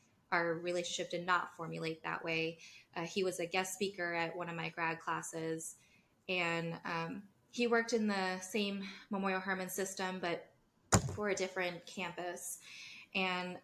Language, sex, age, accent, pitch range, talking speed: English, female, 20-39, American, 170-195 Hz, 155 wpm